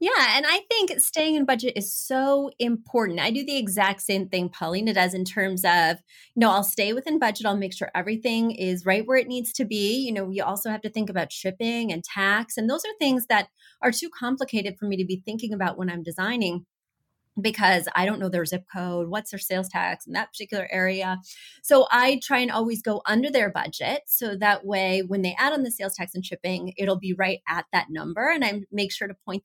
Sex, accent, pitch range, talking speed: female, American, 185-245 Hz, 230 wpm